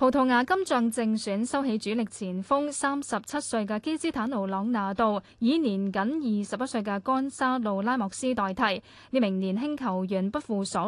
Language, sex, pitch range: Chinese, female, 205-265 Hz